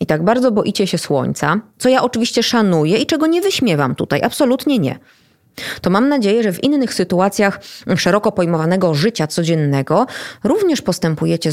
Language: Polish